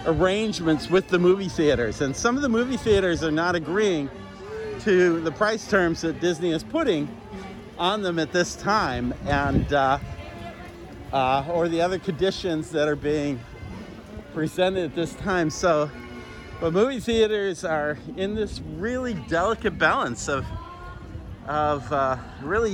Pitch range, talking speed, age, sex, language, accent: 115-180 Hz, 145 wpm, 50-69, male, English, American